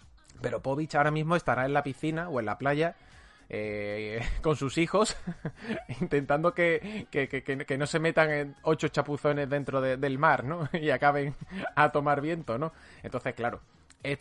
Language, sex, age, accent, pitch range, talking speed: English, male, 30-49, Spanish, 125-160 Hz, 170 wpm